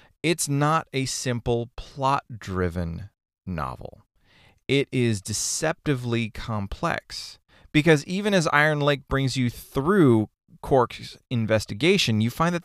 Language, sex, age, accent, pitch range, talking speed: English, male, 30-49, American, 100-145 Hz, 110 wpm